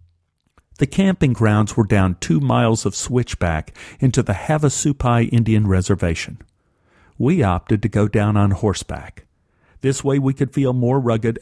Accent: American